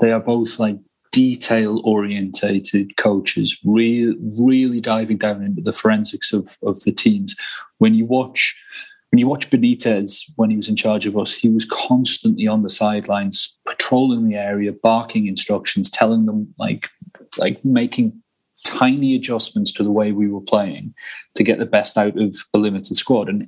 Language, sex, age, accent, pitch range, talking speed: English, male, 30-49, British, 105-145 Hz, 165 wpm